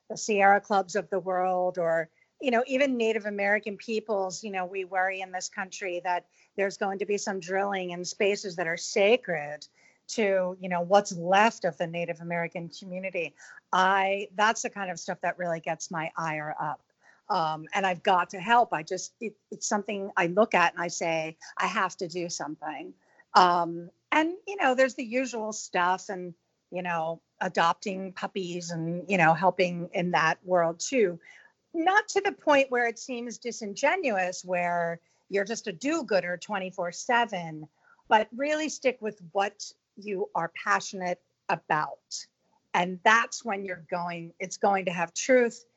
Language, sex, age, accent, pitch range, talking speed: English, female, 50-69, American, 170-210 Hz, 170 wpm